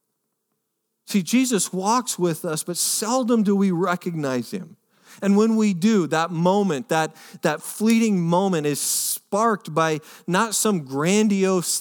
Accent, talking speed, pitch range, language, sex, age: American, 135 wpm, 150-205 Hz, English, male, 40-59